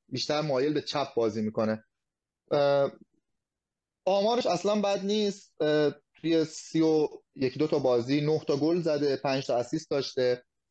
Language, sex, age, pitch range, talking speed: Persian, male, 30-49, 125-165 Hz, 130 wpm